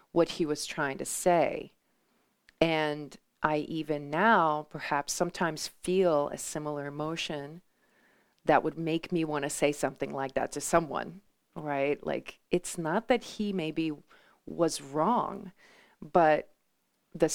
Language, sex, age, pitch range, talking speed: English, female, 40-59, 150-185 Hz, 130 wpm